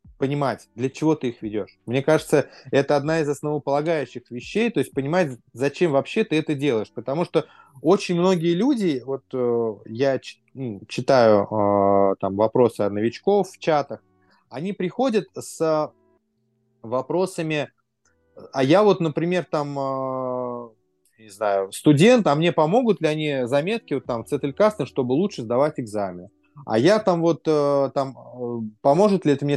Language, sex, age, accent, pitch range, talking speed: Russian, male, 20-39, native, 115-160 Hz, 140 wpm